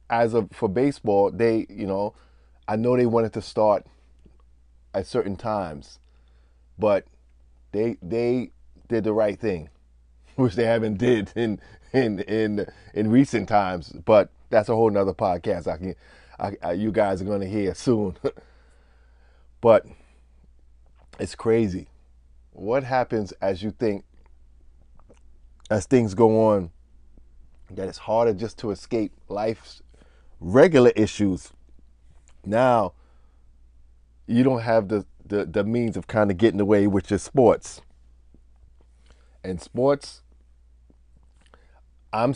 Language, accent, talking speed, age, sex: English, American, 125 wpm, 20-39, male